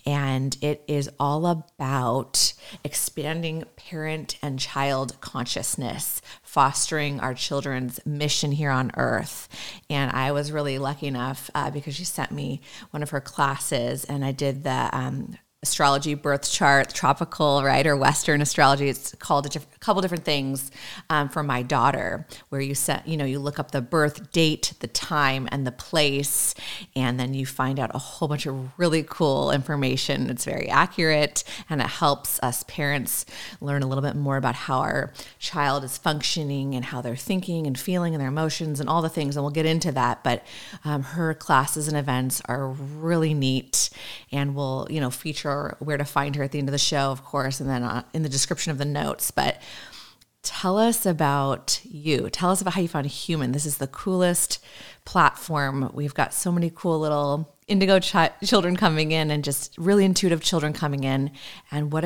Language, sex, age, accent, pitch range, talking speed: English, female, 30-49, American, 135-155 Hz, 190 wpm